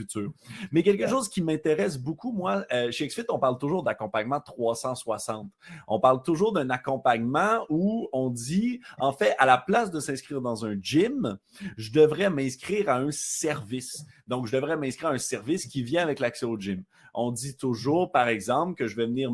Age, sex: 30-49, male